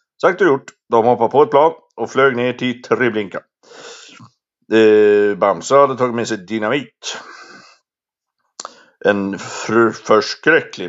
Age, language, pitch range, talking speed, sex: 60-79, Swedish, 120-150 Hz, 115 wpm, male